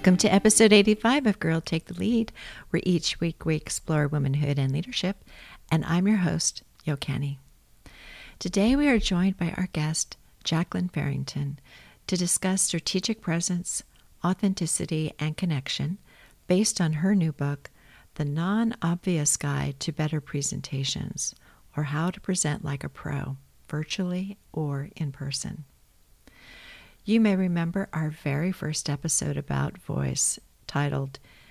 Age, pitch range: 50-69, 145-180 Hz